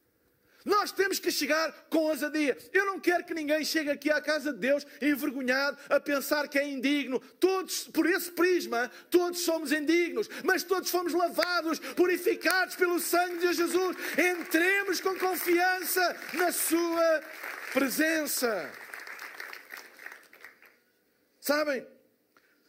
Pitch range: 260-355 Hz